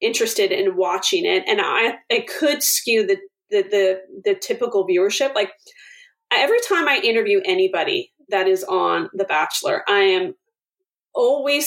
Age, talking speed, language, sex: 30-49, 150 wpm, English, female